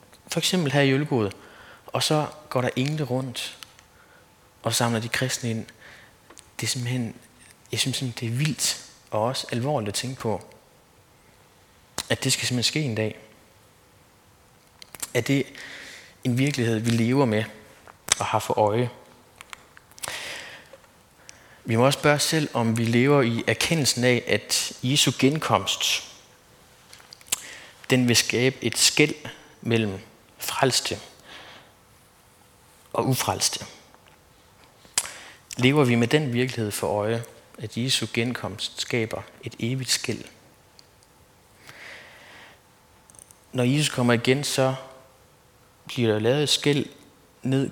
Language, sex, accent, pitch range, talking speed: Danish, male, native, 115-130 Hz, 120 wpm